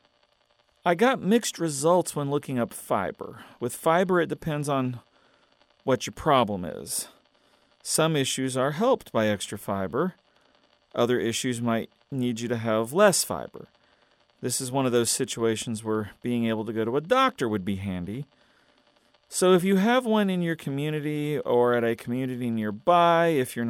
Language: English